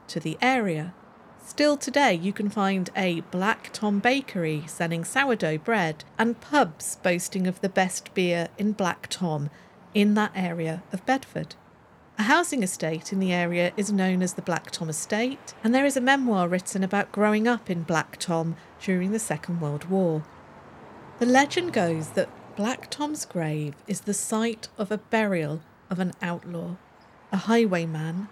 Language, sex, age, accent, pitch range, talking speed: English, female, 50-69, British, 170-230 Hz, 165 wpm